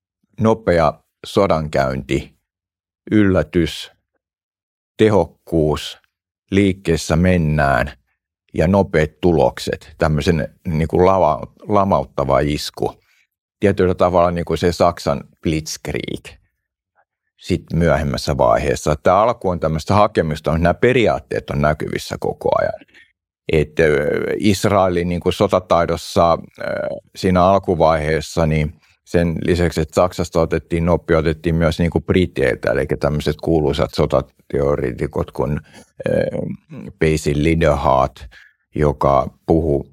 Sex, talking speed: male, 90 wpm